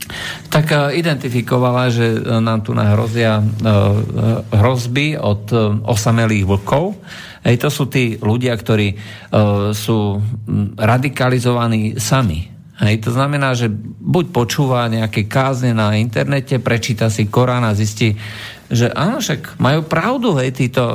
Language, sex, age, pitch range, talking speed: Slovak, male, 50-69, 110-140 Hz, 115 wpm